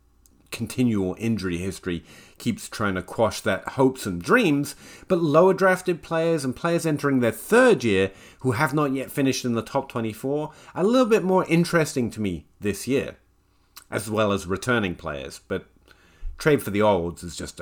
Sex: male